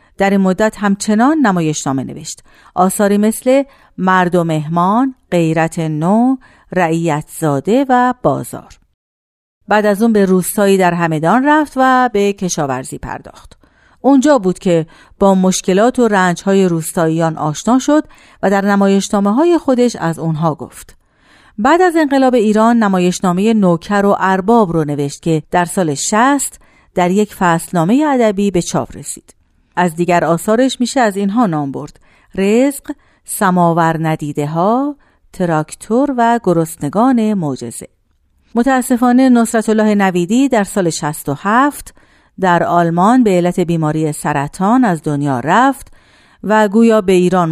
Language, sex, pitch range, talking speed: Persian, female, 165-230 Hz, 130 wpm